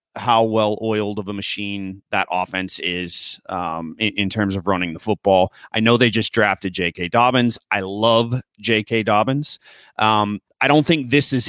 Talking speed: 180 wpm